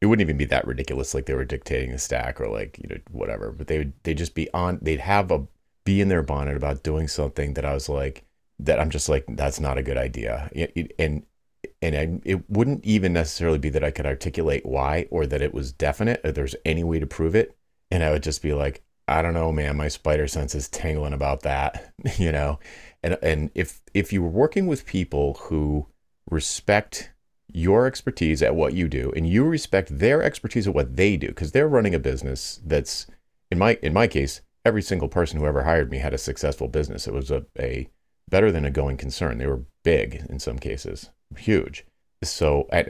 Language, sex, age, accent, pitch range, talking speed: English, male, 30-49, American, 70-90 Hz, 220 wpm